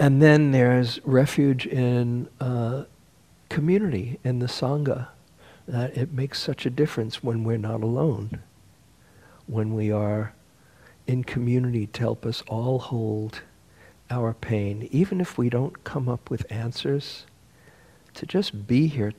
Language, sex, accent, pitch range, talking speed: English, male, American, 115-135 Hz, 140 wpm